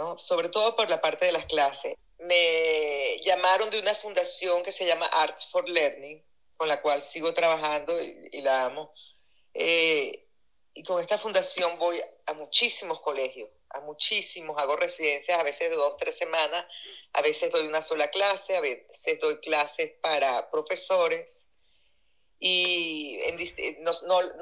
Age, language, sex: 40-59, English, female